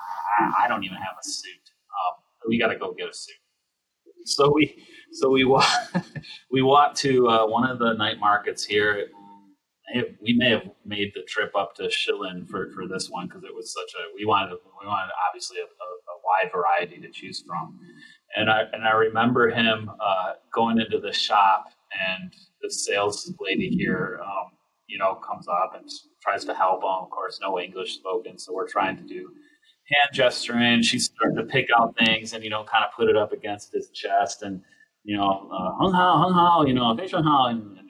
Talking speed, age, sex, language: 200 wpm, 30-49, male, English